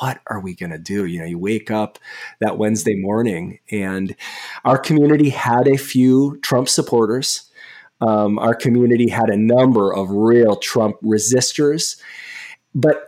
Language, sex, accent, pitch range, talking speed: English, male, American, 105-130 Hz, 150 wpm